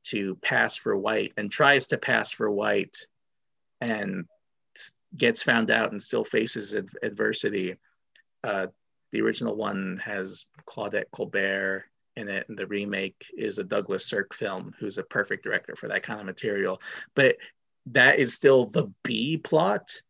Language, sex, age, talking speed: English, male, 30-49, 150 wpm